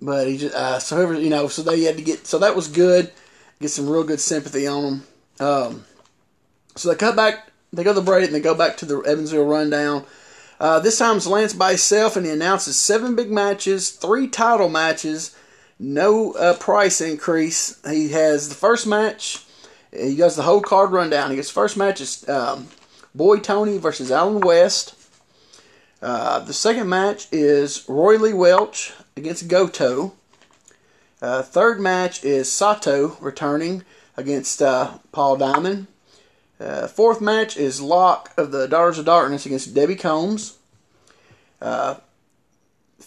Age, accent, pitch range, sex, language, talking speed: 30-49, American, 145-195 Hz, male, English, 165 wpm